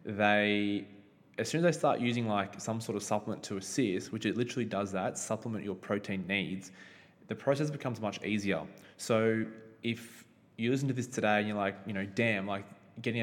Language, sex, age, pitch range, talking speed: English, male, 20-39, 100-115 Hz, 195 wpm